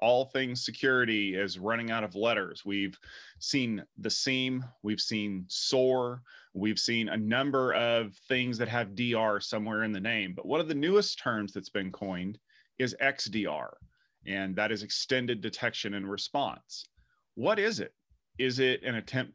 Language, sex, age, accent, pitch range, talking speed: English, male, 30-49, American, 110-145 Hz, 165 wpm